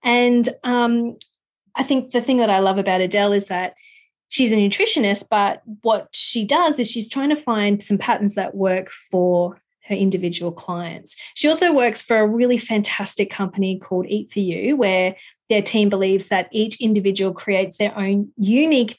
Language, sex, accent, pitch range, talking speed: English, female, Australian, 195-235 Hz, 175 wpm